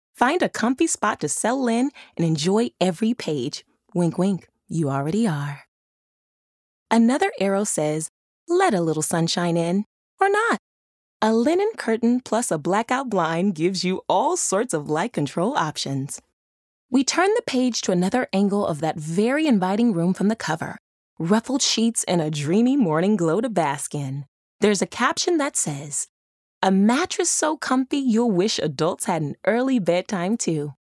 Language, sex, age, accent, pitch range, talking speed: English, female, 20-39, American, 165-240 Hz, 160 wpm